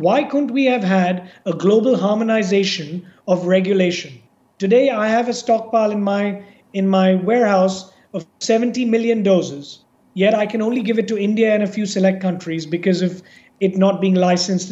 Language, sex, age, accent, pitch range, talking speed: English, male, 50-69, Indian, 185-225 Hz, 175 wpm